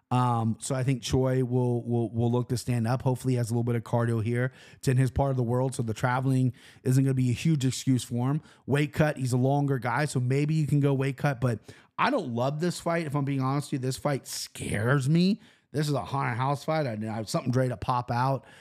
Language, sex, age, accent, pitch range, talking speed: English, male, 30-49, American, 120-145 Hz, 265 wpm